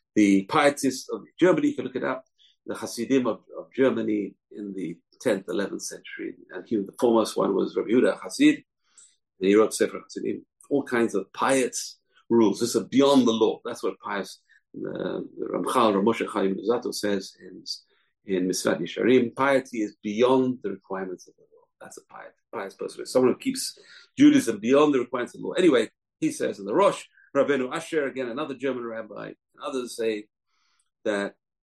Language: English